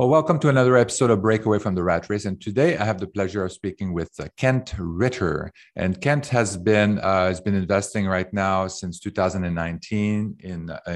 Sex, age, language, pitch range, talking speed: male, 50-69, English, 90-105 Hz, 190 wpm